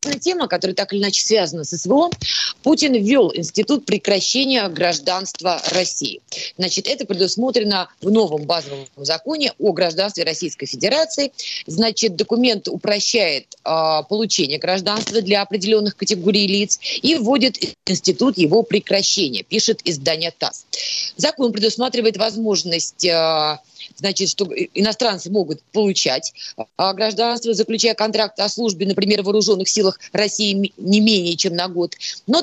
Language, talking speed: Russian, 125 wpm